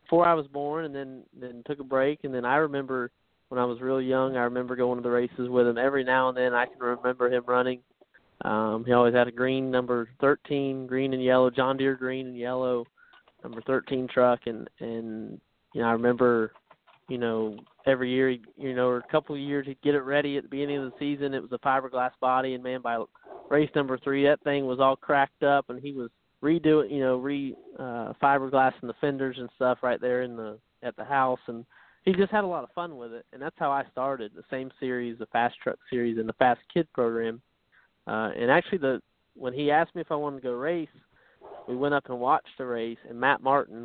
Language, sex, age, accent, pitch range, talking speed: English, male, 20-39, American, 120-140 Hz, 235 wpm